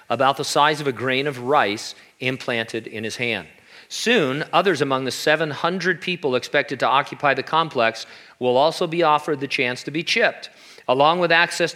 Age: 40-59